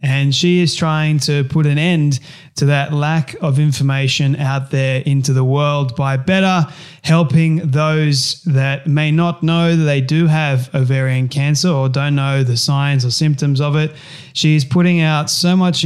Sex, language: male, English